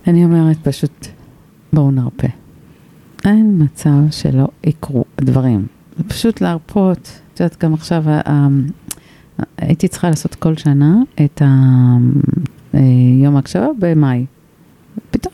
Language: Hebrew